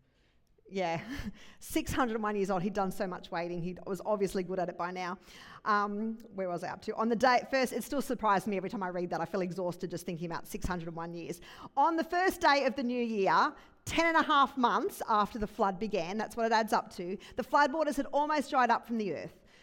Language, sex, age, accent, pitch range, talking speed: English, female, 40-59, Australian, 185-255 Hz, 235 wpm